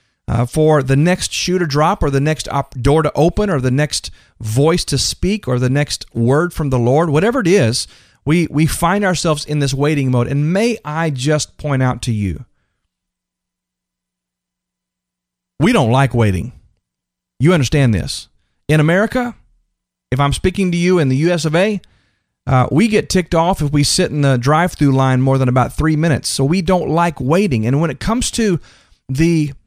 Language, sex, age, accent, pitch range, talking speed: English, male, 40-59, American, 120-175 Hz, 190 wpm